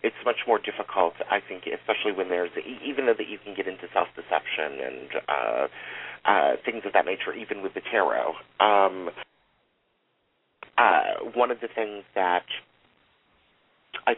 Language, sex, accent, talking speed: English, male, American, 150 wpm